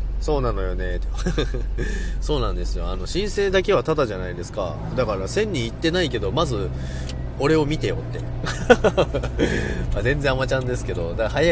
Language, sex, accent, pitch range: Japanese, male, native, 90-150 Hz